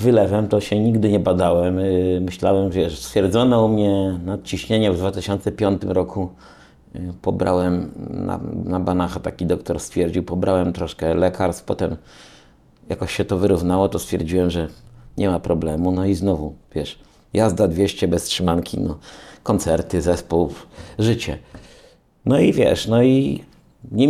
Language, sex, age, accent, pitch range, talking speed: Dutch, male, 50-69, Polish, 90-110 Hz, 135 wpm